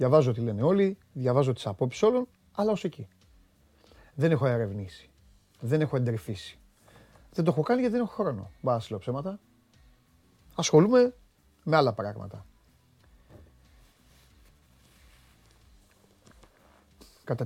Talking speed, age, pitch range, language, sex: 115 wpm, 30-49, 95-140 Hz, Greek, male